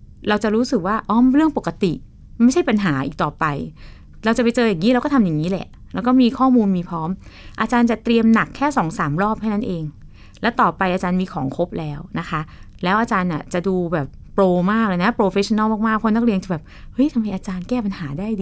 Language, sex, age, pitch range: Thai, female, 20-39, 175-225 Hz